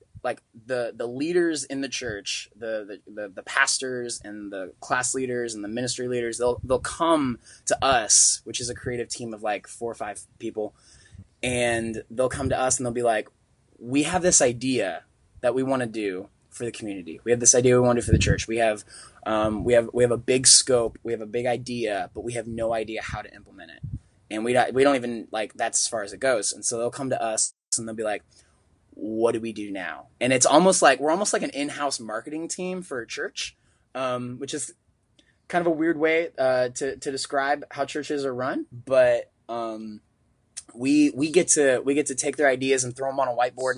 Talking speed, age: 230 wpm, 20-39